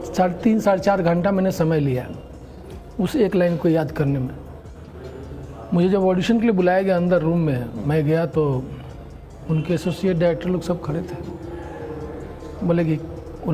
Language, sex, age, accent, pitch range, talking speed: Hindi, male, 40-59, native, 160-200 Hz, 170 wpm